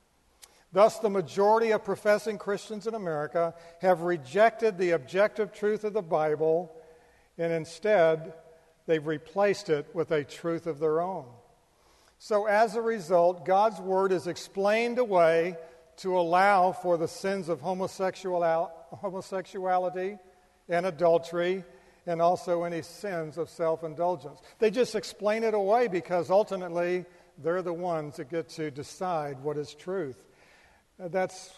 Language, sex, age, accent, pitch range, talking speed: English, male, 50-69, American, 165-190 Hz, 130 wpm